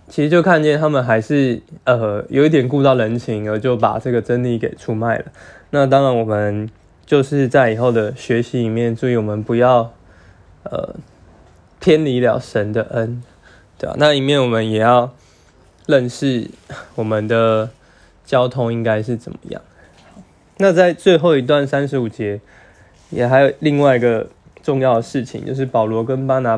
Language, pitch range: Chinese, 115-140 Hz